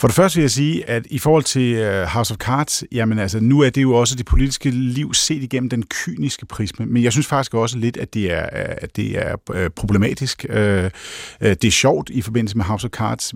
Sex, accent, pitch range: male, native, 105-135 Hz